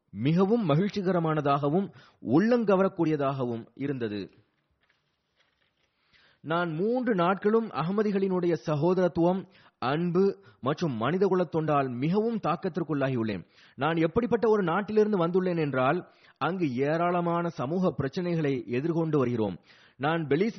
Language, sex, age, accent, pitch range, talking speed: Tamil, male, 30-49, native, 145-195 Hz, 80 wpm